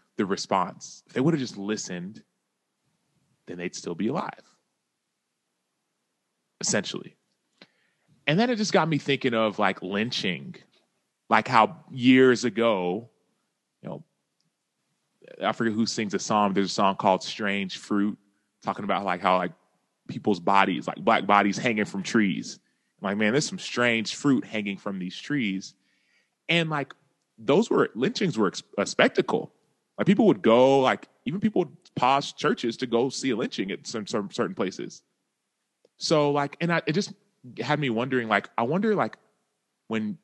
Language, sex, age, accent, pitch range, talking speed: English, male, 30-49, American, 100-150 Hz, 160 wpm